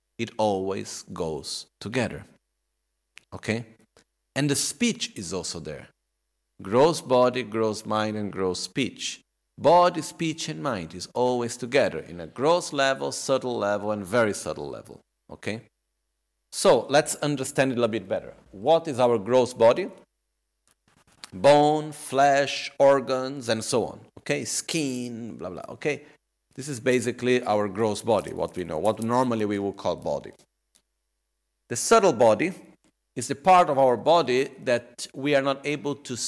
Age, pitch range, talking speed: 50-69, 105-135 Hz, 150 wpm